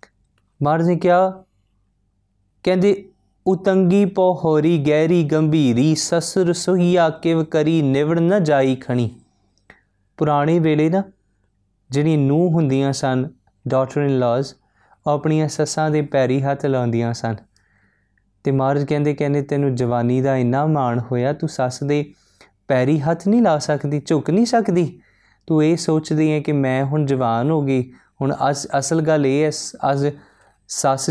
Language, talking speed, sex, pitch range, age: Punjabi, 125 wpm, male, 125-155 Hz, 20-39